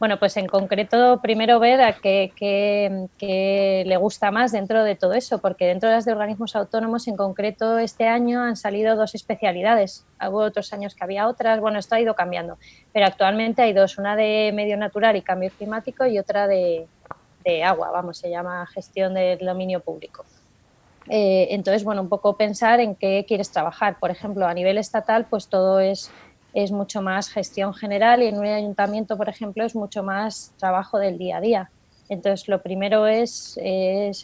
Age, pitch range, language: 20-39, 185-215 Hz, Spanish